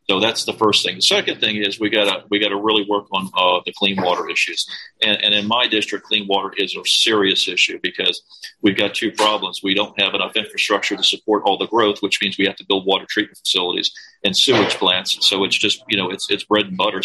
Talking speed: 245 wpm